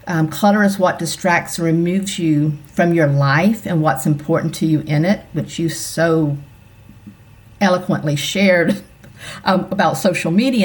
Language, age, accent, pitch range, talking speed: English, 50-69, American, 155-205 Hz, 150 wpm